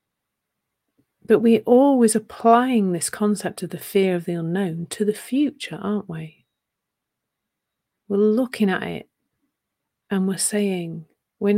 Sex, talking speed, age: female, 130 wpm, 40-59